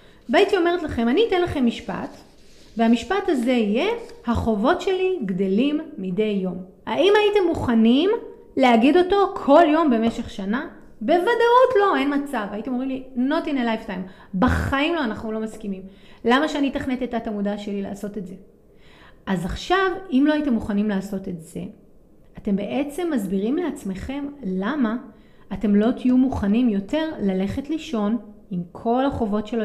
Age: 30-49